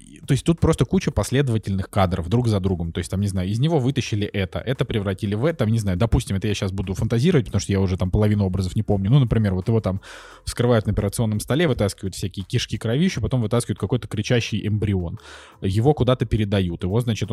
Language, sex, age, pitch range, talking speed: Russian, male, 20-39, 95-120 Hz, 220 wpm